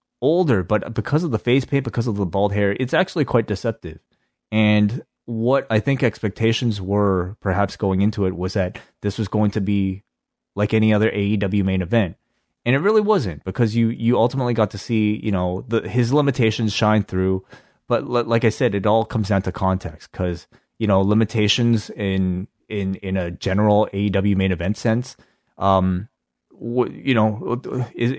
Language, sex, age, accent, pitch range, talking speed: English, male, 30-49, American, 95-120 Hz, 180 wpm